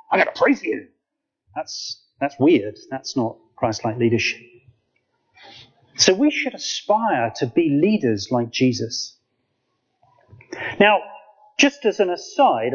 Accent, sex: British, male